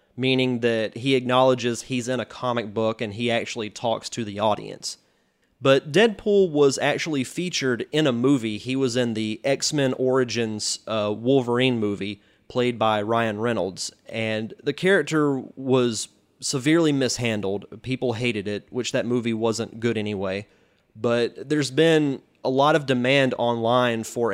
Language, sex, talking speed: English, male, 150 wpm